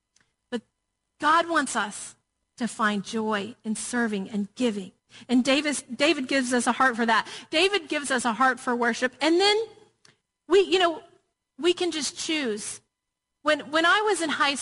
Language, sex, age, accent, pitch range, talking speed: English, female, 40-59, American, 230-330 Hz, 170 wpm